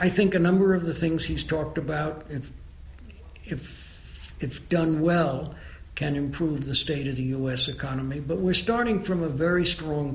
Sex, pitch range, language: male, 135-165 Hz, English